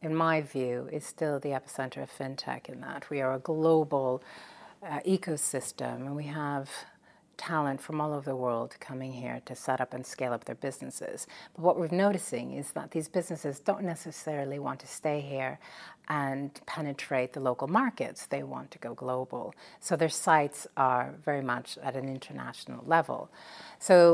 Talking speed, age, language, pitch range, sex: 175 wpm, 40-59, English, 135-170 Hz, female